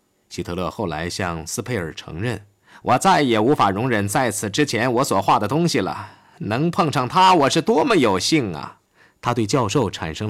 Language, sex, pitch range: Chinese, male, 95-130 Hz